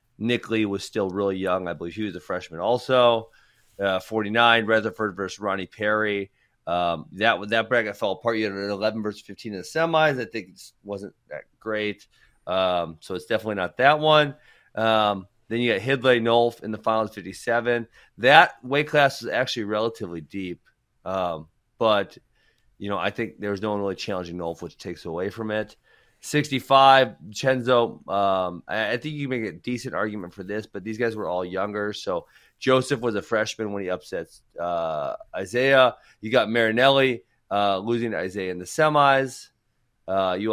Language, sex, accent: English, male, American